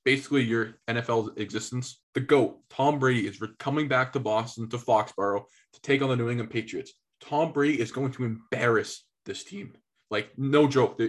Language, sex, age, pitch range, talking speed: English, male, 20-39, 115-140 Hz, 180 wpm